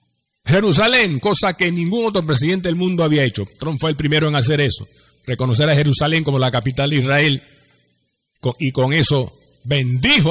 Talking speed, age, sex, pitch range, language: 170 wpm, 50-69, male, 125-150 Hz, Spanish